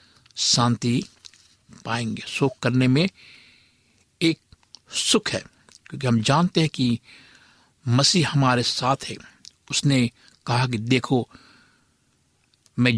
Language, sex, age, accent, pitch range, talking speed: Hindi, male, 60-79, native, 120-145 Hz, 100 wpm